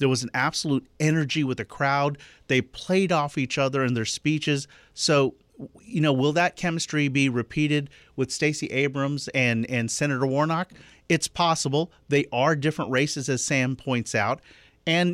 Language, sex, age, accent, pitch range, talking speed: English, male, 40-59, American, 120-150 Hz, 165 wpm